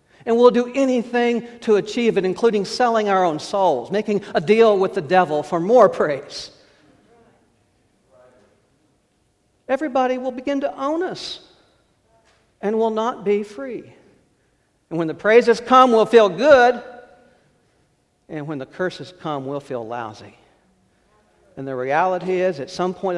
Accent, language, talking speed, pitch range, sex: American, English, 140 wpm, 140-220 Hz, male